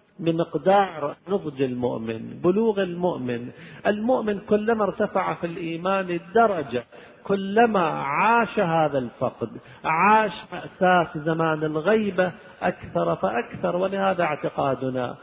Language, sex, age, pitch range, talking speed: Arabic, male, 50-69, 160-210 Hz, 90 wpm